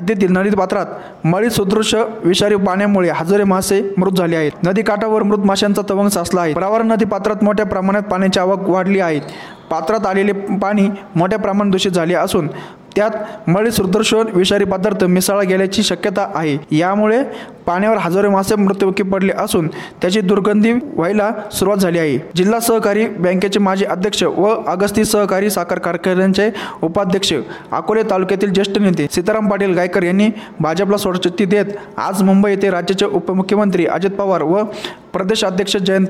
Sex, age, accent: male, 20-39, native